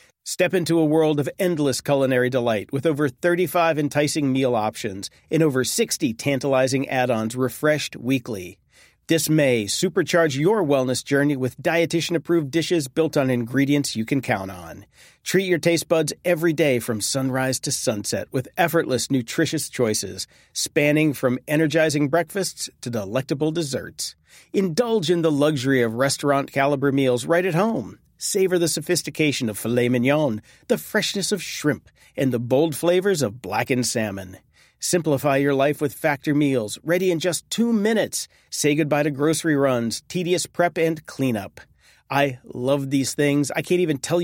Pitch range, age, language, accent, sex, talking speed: 130-165 Hz, 40-59, English, American, male, 155 wpm